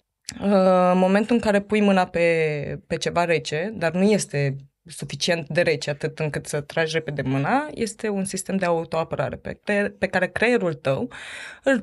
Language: Romanian